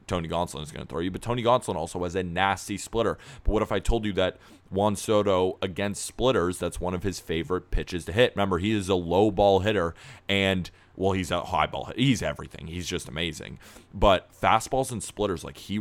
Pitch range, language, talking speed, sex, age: 85-105 Hz, English, 215 wpm, male, 30-49